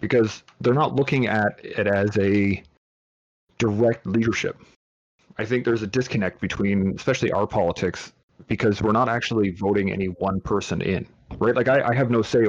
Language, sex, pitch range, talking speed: English, male, 95-115 Hz, 170 wpm